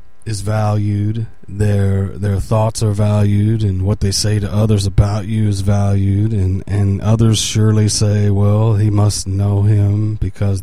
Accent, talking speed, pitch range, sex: American, 160 wpm, 95-110 Hz, male